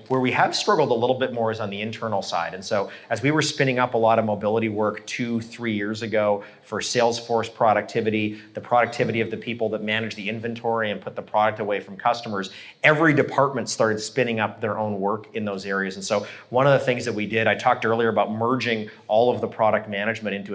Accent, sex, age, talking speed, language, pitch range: American, male, 30-49, 230 wpm, English, 105-120 Hz